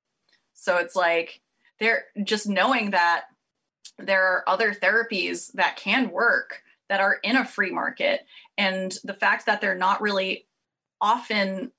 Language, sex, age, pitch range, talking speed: English, female, 20-39, 180-220 Hz, 145 wpm